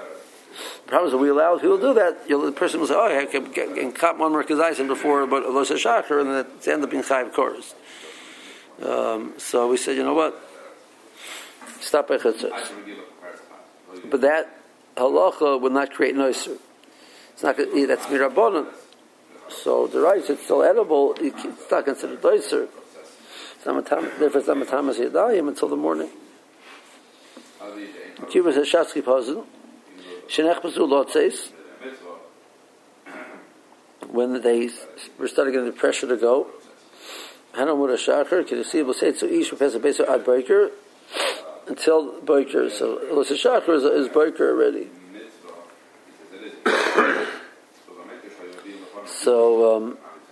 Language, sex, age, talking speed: English, male, 60-79, 145 wpm